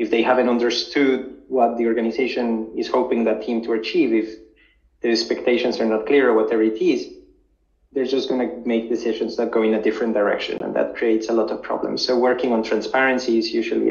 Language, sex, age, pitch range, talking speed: English, male, 30-49, 115-165 Hz, 205 wpm